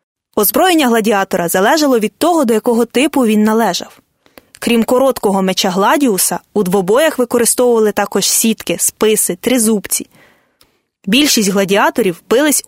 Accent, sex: native, female